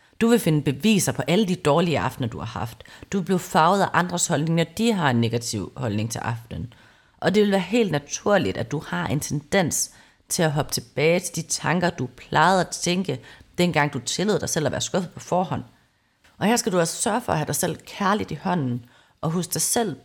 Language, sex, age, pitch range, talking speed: Danish, female, 30-49, 145-205 Hz, 230 wpm